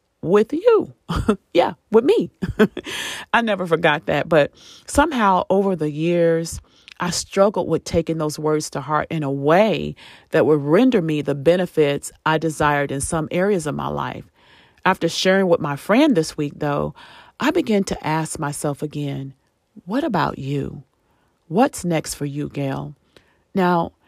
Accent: American